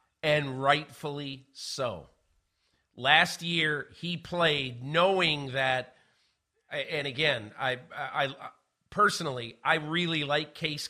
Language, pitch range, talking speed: English, 135-165 Hz, 105 wpm